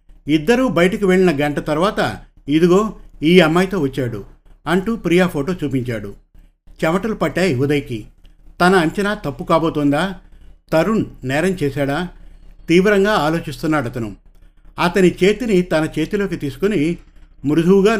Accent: native